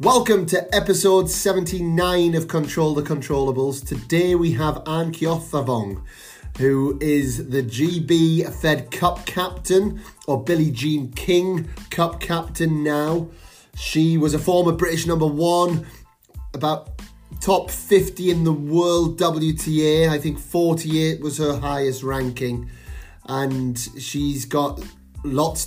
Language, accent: English, British